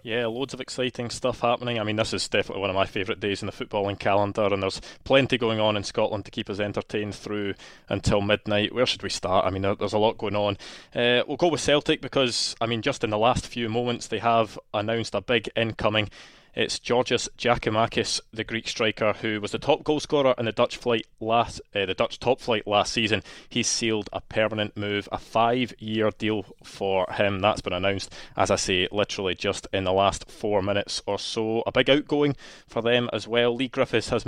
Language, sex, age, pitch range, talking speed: English, male, 20-39, 105-120 Hz, 215 wpm